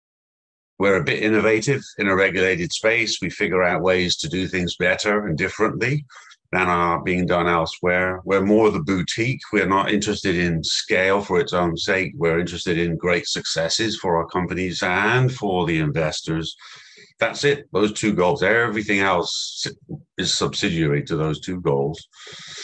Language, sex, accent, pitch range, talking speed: English, male, British, 85-105 Hz, 165 wpm